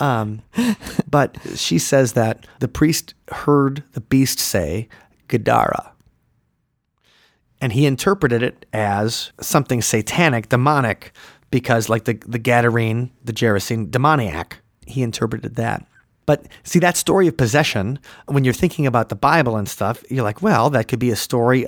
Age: 30-49